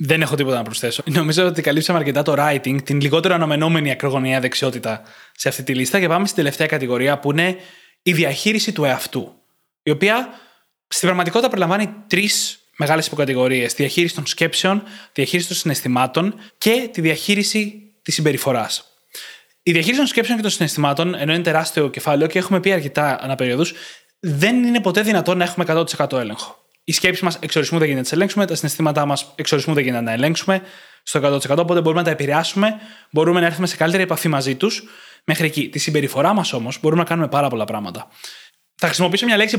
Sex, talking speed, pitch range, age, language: male, 185 wpm, 145-190 Hz, 20-39, Greek